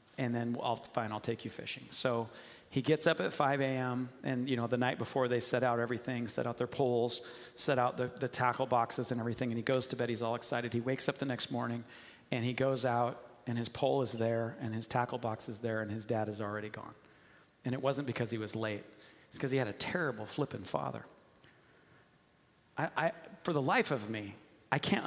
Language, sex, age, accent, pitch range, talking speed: English, male, 40-59, American, 110-135 Hz, 230 wpm